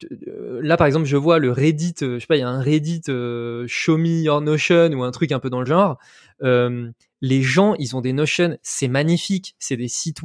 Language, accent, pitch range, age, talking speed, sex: French, French, 130-170 Hz, 20-39, 240 wpm, male